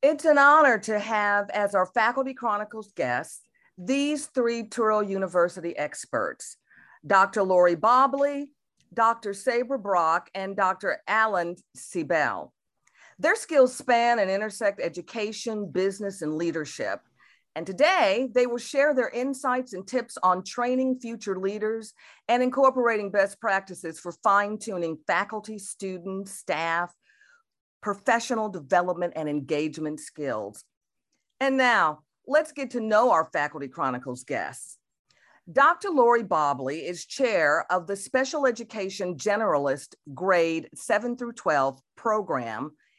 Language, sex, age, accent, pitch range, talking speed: English, female, 50-69, American, 180-245 Hz, 120 wpm